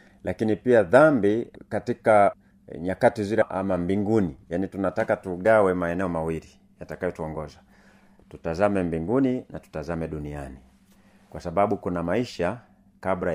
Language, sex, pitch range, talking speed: Swahili, male, 85-110 Hz, 110 wpm